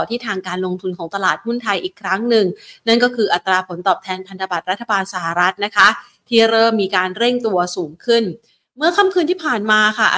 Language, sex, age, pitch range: Thai, female, 30-49, 190-235 Hz